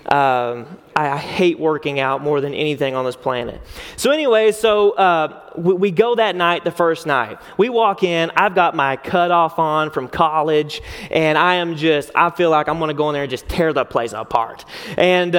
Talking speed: 205 wpm